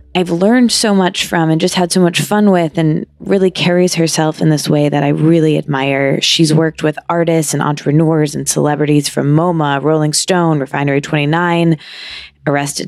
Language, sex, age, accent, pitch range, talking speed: English, female, 20-39, American, 150-180 Hz, 170 wpm